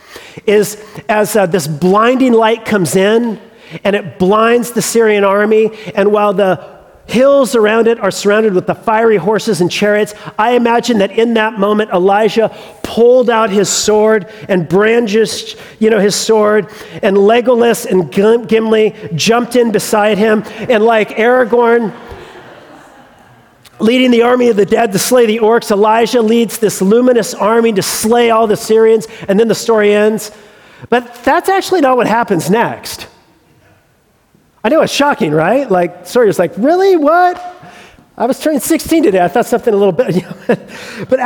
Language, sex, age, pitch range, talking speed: English, male, 40-59, 205-240 Hz, 165 wpm